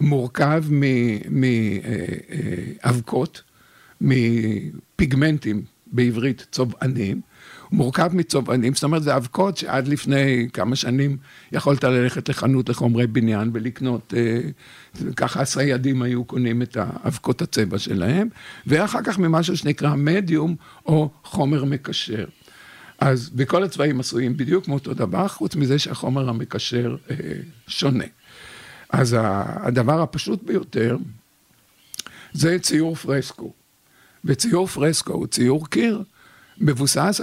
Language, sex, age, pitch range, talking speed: Hebrew, male, 50-69, 125-160 Hz, 110 wpm